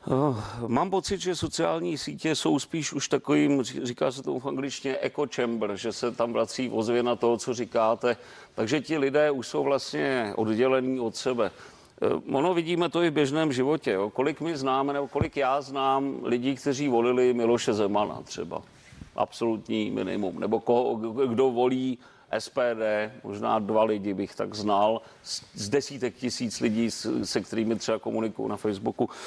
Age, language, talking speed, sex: 40-59, Czech, 160 wpm, male